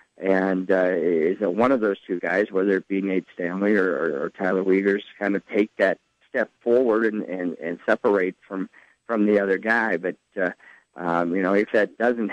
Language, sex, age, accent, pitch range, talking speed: English, male, 50-69, American, 95-115 Hz, 210 wpm